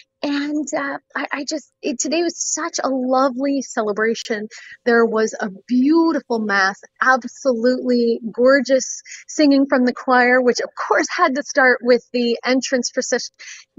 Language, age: English, 30-49